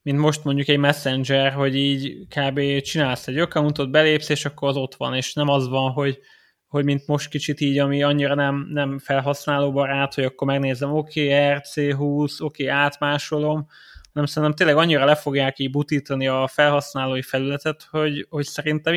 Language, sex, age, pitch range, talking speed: Hungarian, male, 20-39, 135-150 Hz, 175 wpm